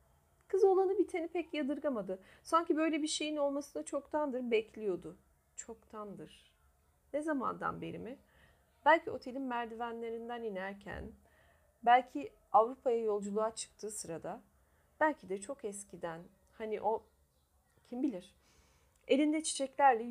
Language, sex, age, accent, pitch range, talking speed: Turkish, female, 40-59, native, 195-260 Hz, 105 wpm